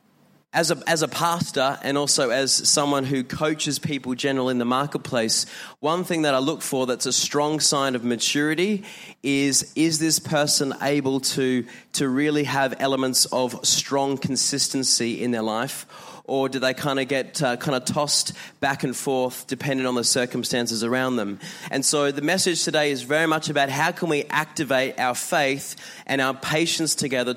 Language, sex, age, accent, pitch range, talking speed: English, male, 20-39, Australian, 130-150 Hz, 180 wpm